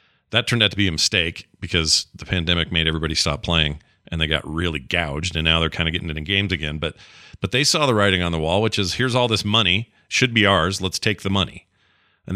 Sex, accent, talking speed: male, American, 250 wpm